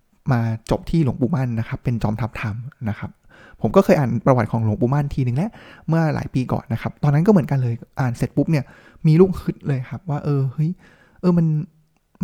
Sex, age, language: male, 20-39, Thai